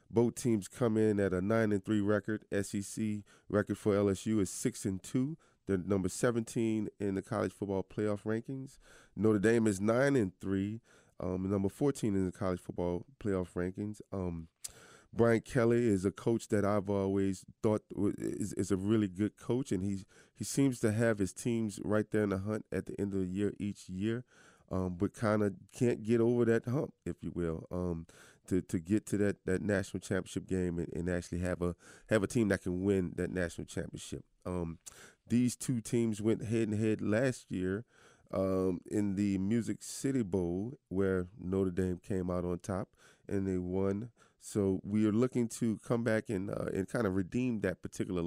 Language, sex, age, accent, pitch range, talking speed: English, male, 20-39, American, 95-110 Hz, 195 wpm